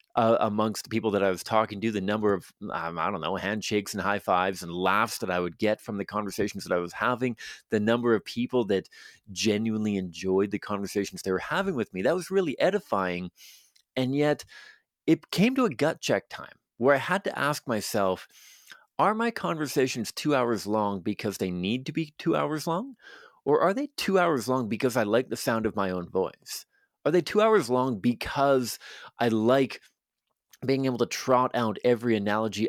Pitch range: 105-145 Hz